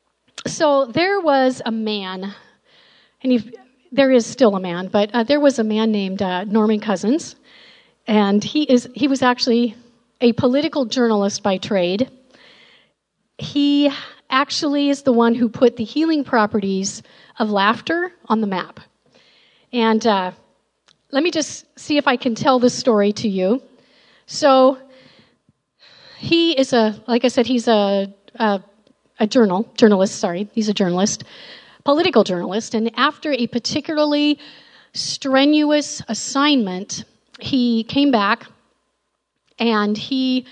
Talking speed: 135 wpm